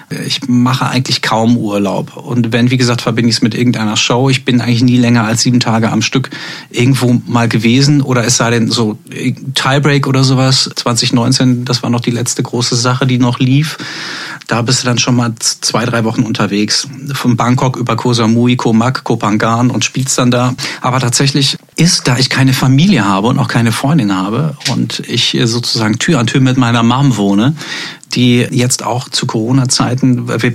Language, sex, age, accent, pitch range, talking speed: German, male, 40-59, German, 120-140 Hz, 190 wpm